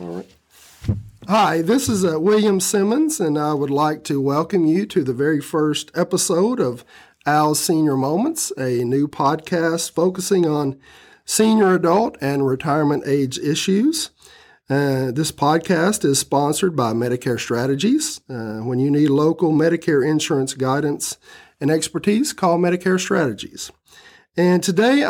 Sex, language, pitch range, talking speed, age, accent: male, English, 145-185 Hz, 140 wpm, 50-69, American